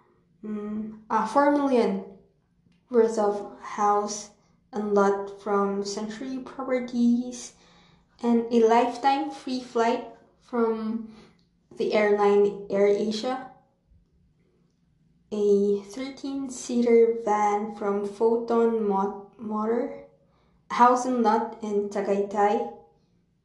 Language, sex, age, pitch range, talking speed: English, female, 20-39, 205-235 Hz, 85 wpm